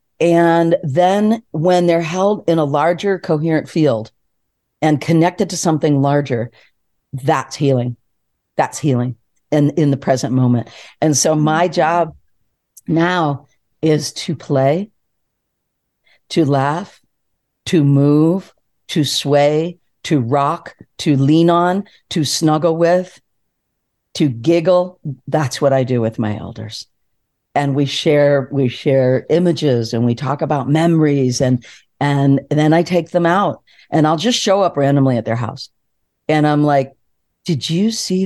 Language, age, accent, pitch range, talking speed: English, 50-69, American, 135-180 Hz, 140 wpm